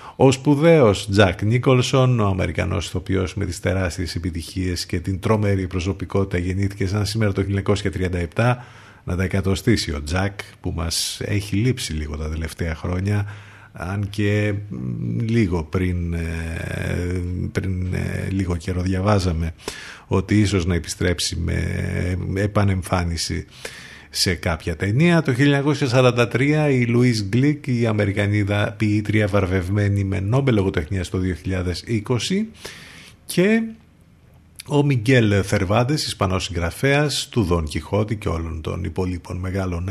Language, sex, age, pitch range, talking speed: Greek, male, 50-69, 90-115 Hz, 115 wpm